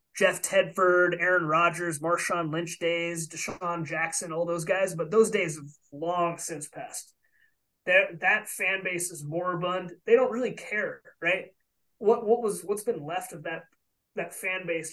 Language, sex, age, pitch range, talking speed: English, male, 20-39, 165-195 Hz, 165 wpm